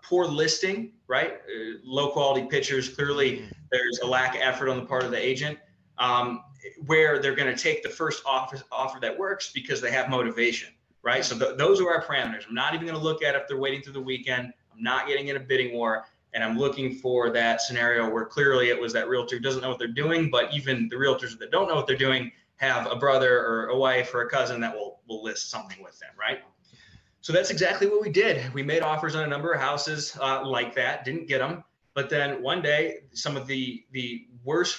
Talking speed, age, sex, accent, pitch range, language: 235 wpm, 20-39, male, American, 125-155 Hz, English